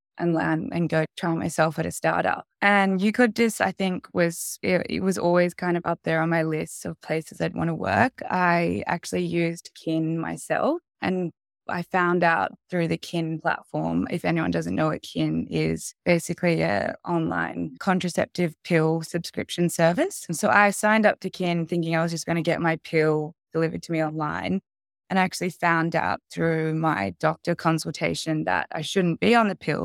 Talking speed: 190 wpm